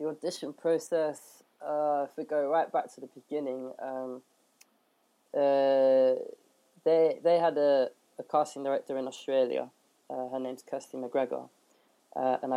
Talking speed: 145 wpm